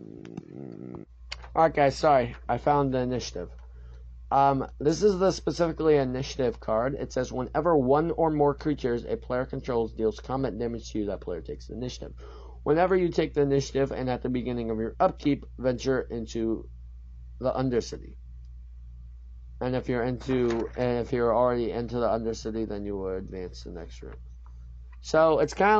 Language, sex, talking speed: English, male, 165 wpm